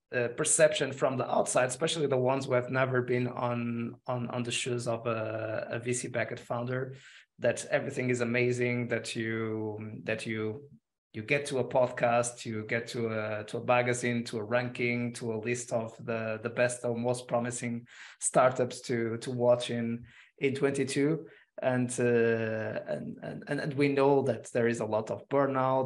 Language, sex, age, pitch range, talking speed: English, male, 20-39, 115-130 Hz, 180 wpm